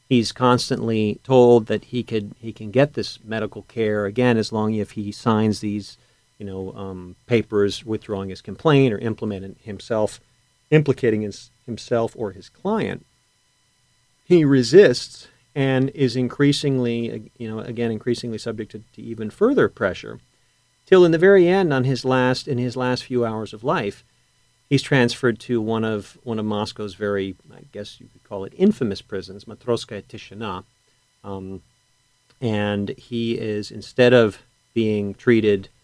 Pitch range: 105-125 Hz